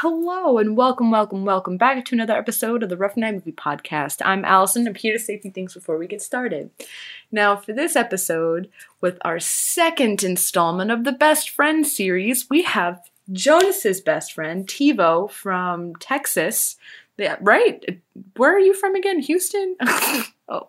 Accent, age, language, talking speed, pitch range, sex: American, 20-39, English, 165 wpm, 175-270 Hz, female